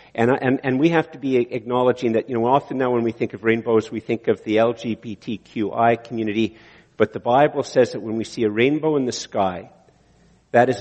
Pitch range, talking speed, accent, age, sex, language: 115-160 Hz, 215 wpm, American, 50-69, male, English